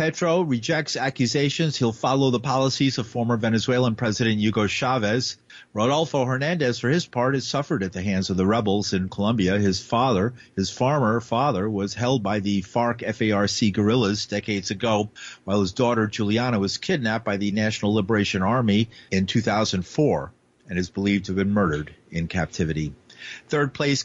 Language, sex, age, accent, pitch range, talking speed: English, male, 50-69, American, 100-135 Hz, 160 wpm